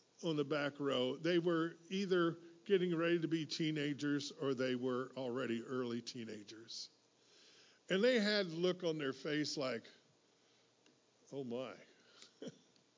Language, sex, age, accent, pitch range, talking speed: English, male, 50-69, American, 115-155 Hz, 135 wpm